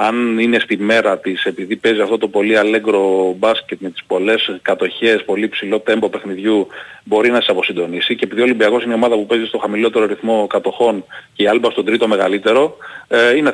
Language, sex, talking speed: Greek, male, 200 wpm